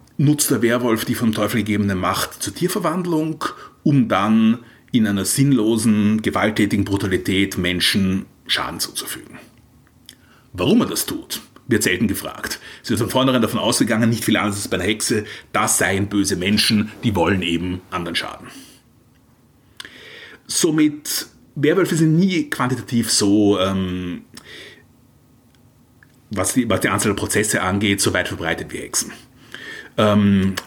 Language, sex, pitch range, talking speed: German, male, 100-125 Hz, 135 wpm